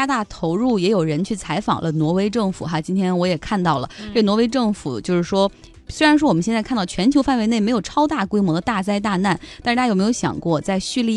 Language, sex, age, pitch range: Chinese, female, 20-39, 170-240 Hz